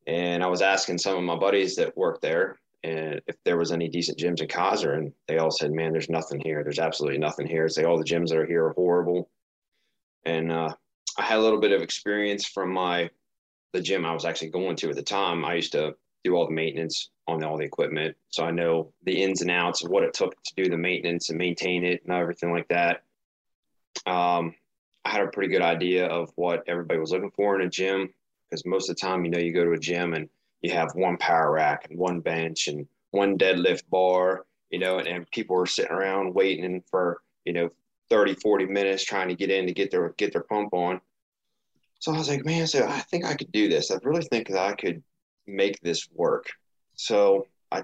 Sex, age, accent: male, 20-39, American